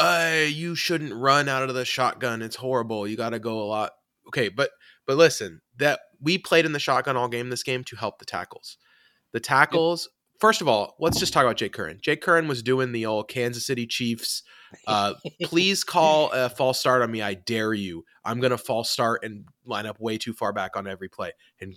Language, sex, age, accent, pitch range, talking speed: English, male, 20-39, American, 110-135 Hz, 225 wpm